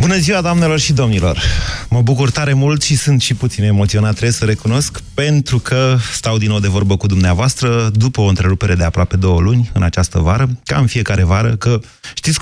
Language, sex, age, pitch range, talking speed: Romanian, male, 30-49, 100-135 Hz, 205 wpm